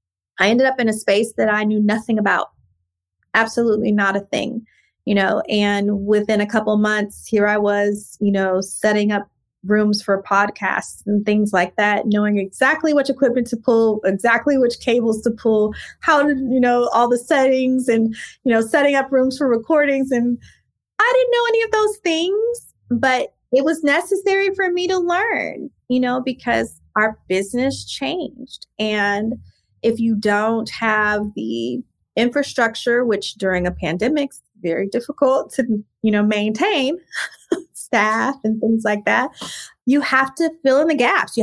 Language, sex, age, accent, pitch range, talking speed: English, female, 20-39, American, 205-260 Hz, 165 wpm